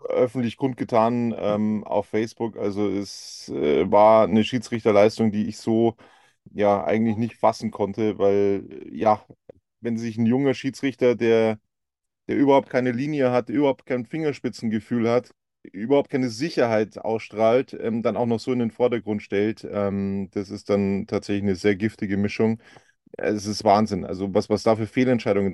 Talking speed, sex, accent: 155 wpm, male, German